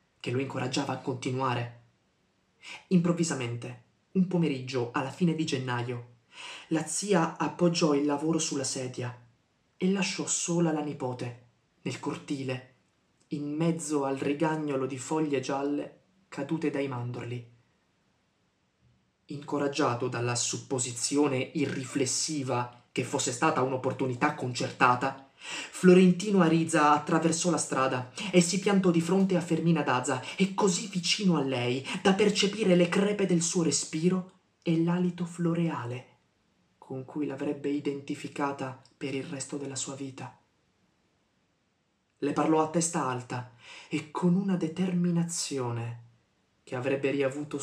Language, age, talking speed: Italian, 20-39, 120 wpm